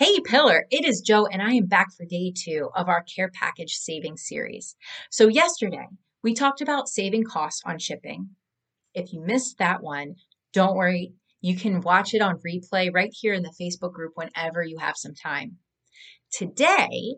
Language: English